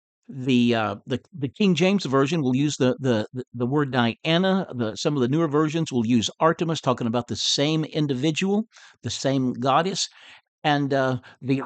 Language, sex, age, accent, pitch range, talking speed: English, male, 60-79, American, 125-185 Hz, 180 wpm